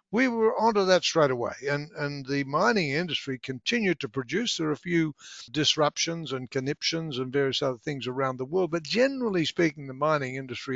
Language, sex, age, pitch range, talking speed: English, male, 60-79, 135-180 Hz, 190 wpm